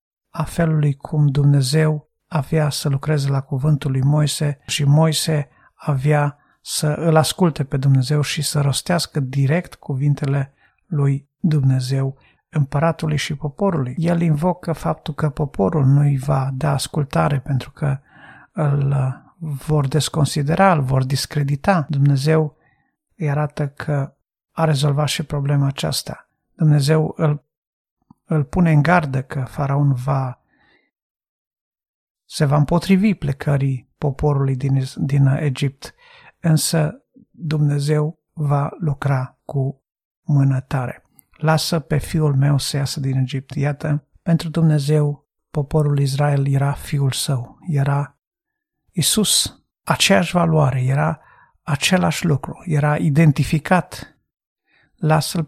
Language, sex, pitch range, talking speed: Romanian, male, 140-155 Hz, 115 wpm